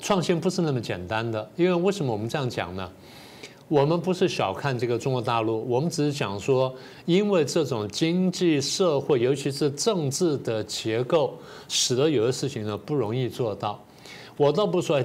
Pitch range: 120-160 Hz